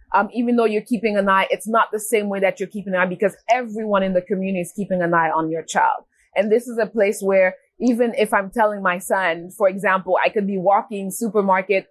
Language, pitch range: English, 185-220 Hz